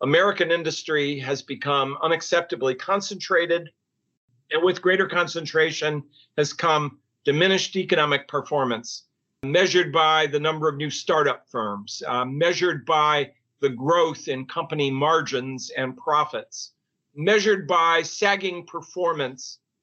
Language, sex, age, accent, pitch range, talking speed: English, male, 50-69, American, 140-180 Hz, 110 wpm